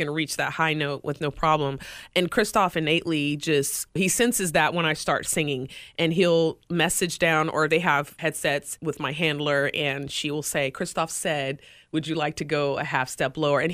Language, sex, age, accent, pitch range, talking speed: English, female, 30-49, American, 150-180 Hz, 200 wpm